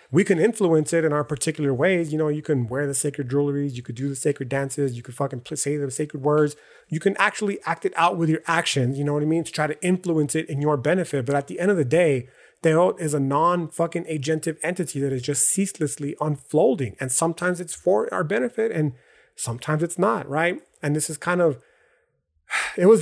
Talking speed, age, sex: 225 wpm, 30-49, male